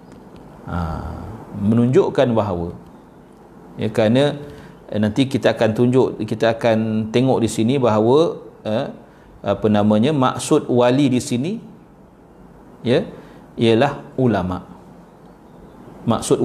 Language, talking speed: Malay, 100 wpm